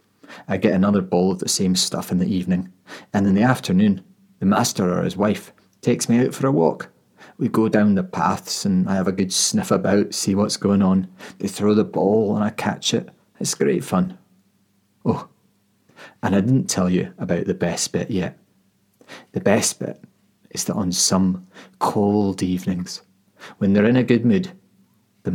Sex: male